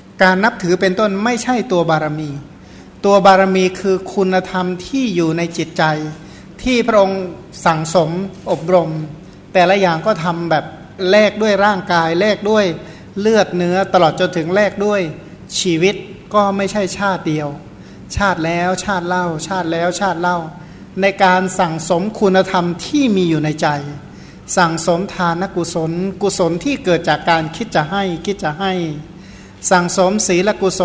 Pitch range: 165-195 Hz